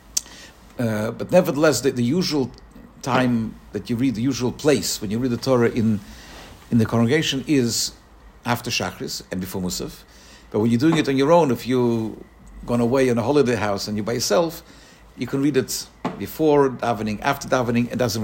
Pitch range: 110-145 Hz